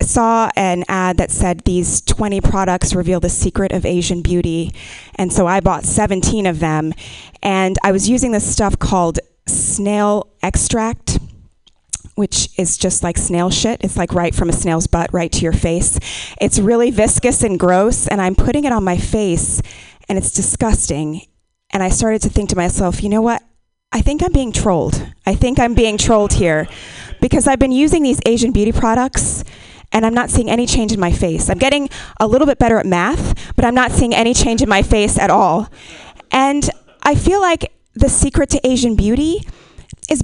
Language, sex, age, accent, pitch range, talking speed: English, female, 20-39, American, 185-245 Hz, 190 wpm